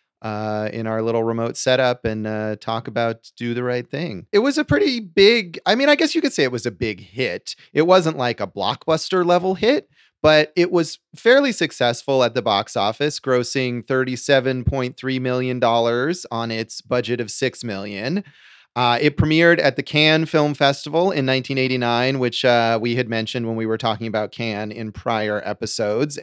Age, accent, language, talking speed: 30-49, American, English, 185 wpm